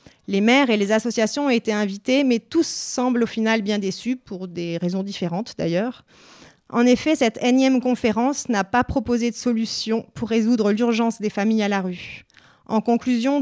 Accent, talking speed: French, 180 wpm